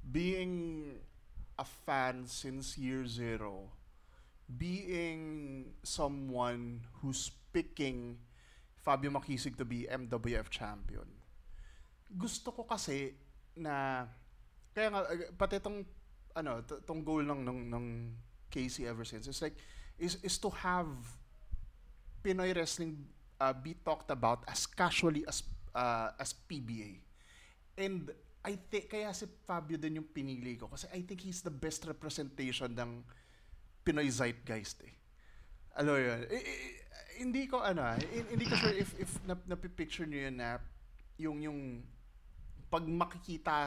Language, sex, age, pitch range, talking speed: English, male, 20-39, 120-165 Hz, 130 wpm